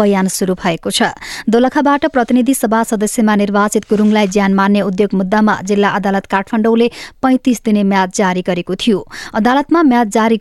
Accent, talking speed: Indian, 135 wpm